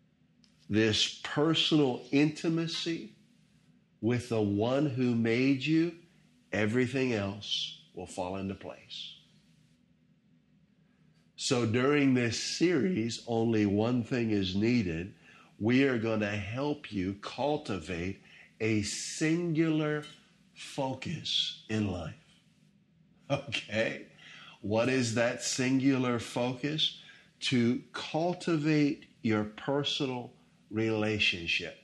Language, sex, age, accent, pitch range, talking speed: English, male, 50-69, American, 110-145 Hz, 90 wpm